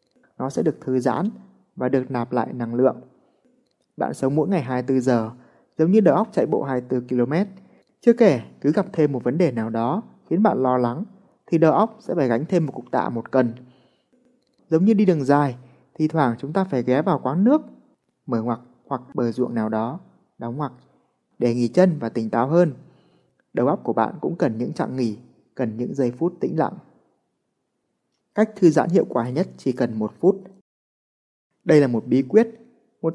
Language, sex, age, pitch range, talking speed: Vietnamese, male, 20-39, 125-175 Hz, 205 wpm